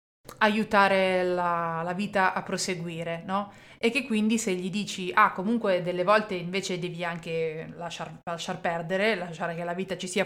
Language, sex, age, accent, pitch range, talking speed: Italian, female, 20-39, native, 175-215 Hz, 170 wpm